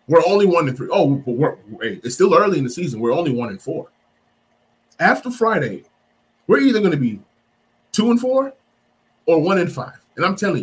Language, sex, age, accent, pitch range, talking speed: English, male, 20-39, American, 120-180 Hz, 200 wpm